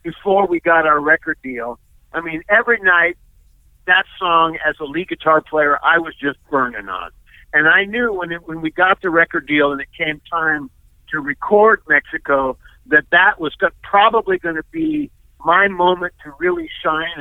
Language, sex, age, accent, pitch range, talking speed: English, male, 50-69, American, 150-195 Hz, 180 wpm